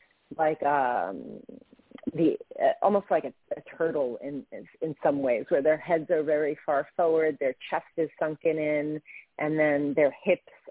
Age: 30-49